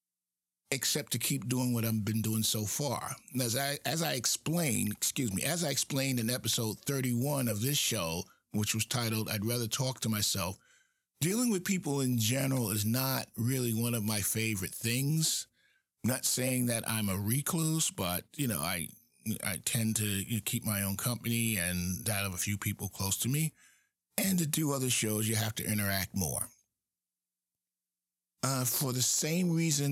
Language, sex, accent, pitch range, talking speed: English, male, American, 105-145 Hz, 175 wpm